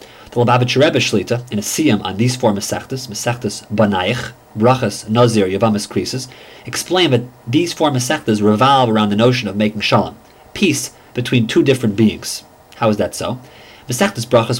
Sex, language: male, English